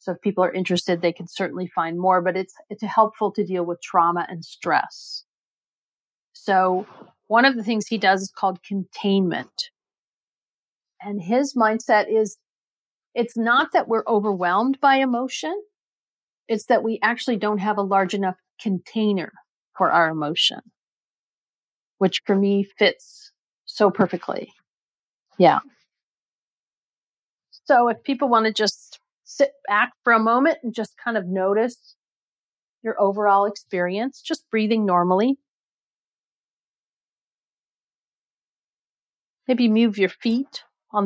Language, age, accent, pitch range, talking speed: English, 40-59, American, 190-235 Hz, 130 wpm